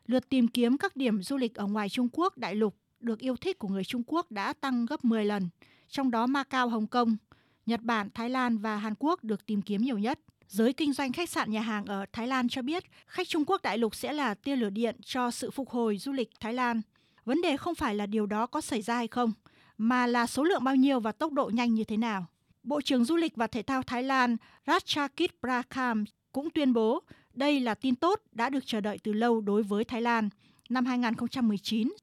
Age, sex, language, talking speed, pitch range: 20-39, female, Vietnamese, 240 wpm, 220-270 Hz